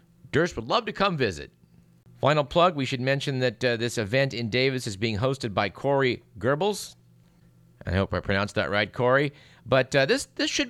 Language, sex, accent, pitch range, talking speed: English, male, American, 100-135 Hz, 195 wpm